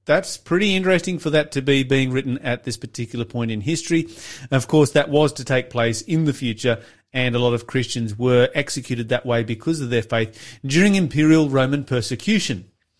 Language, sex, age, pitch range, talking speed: English, male, 30-49, 120-165 Hz, 195 wpm